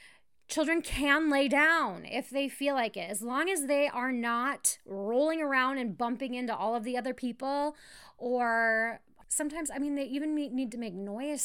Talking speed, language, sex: 185 wpm, English, female